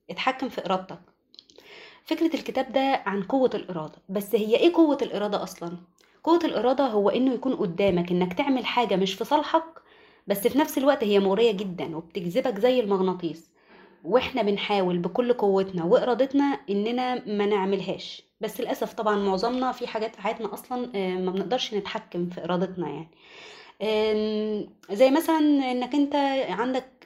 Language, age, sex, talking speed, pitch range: Arabic, 20-39, female, 145 wpm, 195-260 Hz